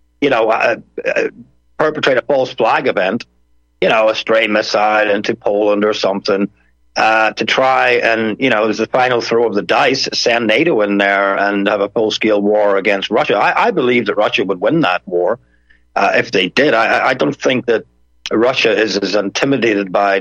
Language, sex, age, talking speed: English, male, 50-69, 195 wpm